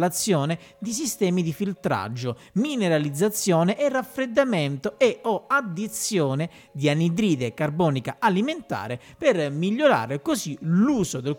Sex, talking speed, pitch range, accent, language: male, 100 wpm, 135-195 Hz, native, Italian